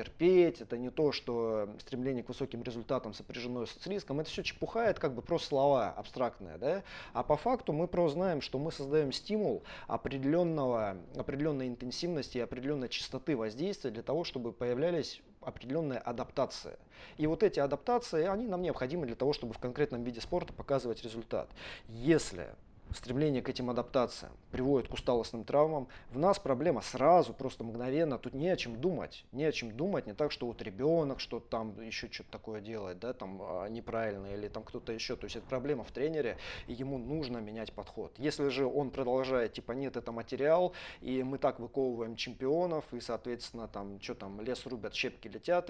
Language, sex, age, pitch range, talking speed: Russian, male, 20-39, 115-150 Hz, 180 wpm